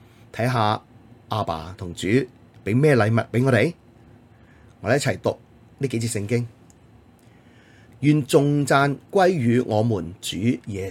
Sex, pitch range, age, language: male, 110-130 Hz, 30-49, Chinese